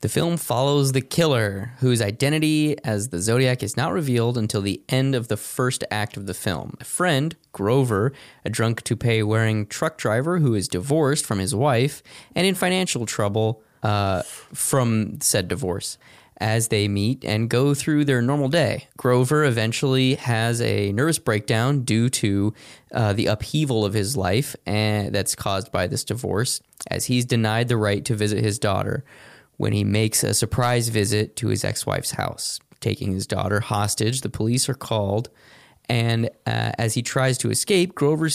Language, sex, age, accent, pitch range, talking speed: English, male, 20-39, American, 105-135 Hz, 170 wpm